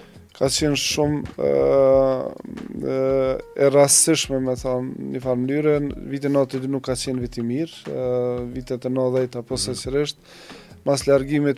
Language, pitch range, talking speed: English, 130-145 Hz, 110 wpm